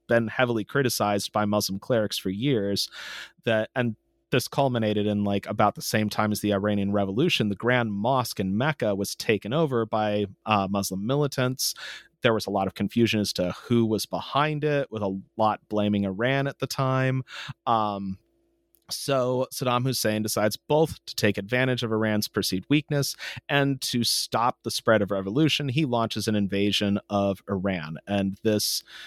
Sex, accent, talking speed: male, American, 170 wpm